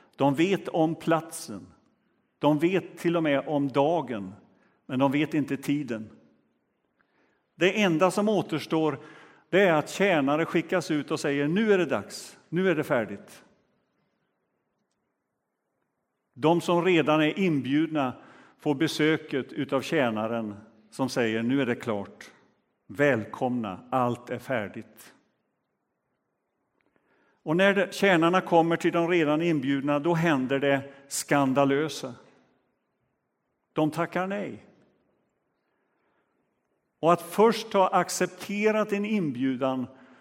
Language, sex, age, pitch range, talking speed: Swedish, male, 50-69, 135-175 Hz, 115 wpm